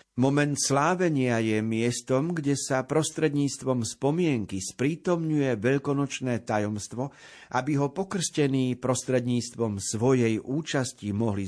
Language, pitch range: Slovak, 115-140 Hz